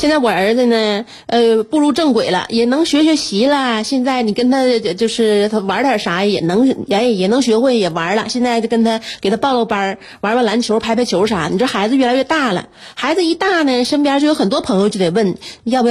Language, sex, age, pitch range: Chinese, female, 30-49, 200-260 Hz